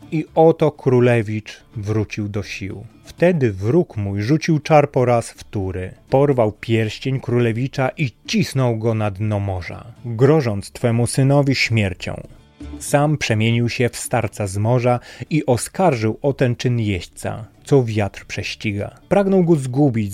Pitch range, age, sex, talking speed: 105-135 Hz, 30-49, male, 135 wpm